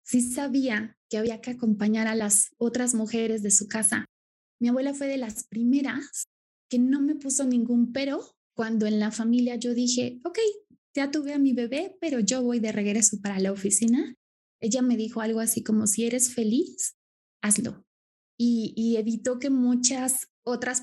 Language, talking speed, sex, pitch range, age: Spanish, 175 wpm, female, 210-260 Hz, 20-39